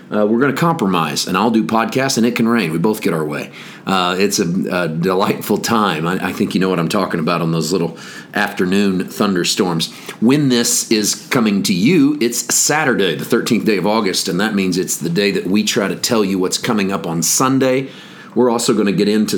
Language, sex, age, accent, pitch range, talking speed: English, male, 40-59, American, 95-115 Hz, 230 wpm